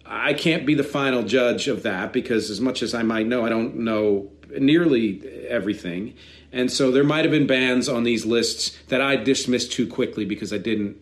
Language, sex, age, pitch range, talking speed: English, male, 40-59, 110-140 Hz, 200 wpm